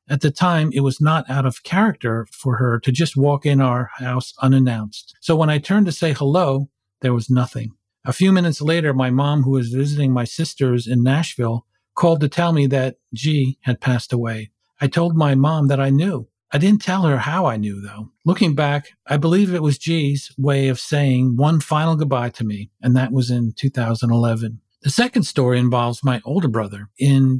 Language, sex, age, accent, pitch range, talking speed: English, male, 50-69, American, 120-150 Hz, 205 wpm